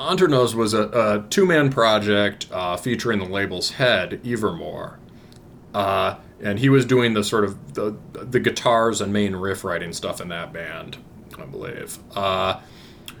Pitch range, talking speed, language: 105-135 Hz, 155 wpm, English